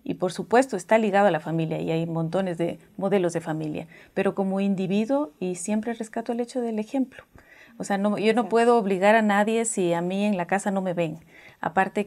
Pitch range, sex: 170-210 Hz, female